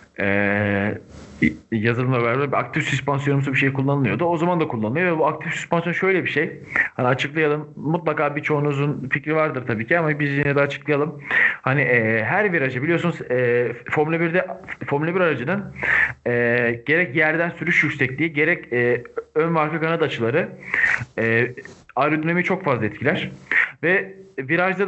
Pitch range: 125-160 Hz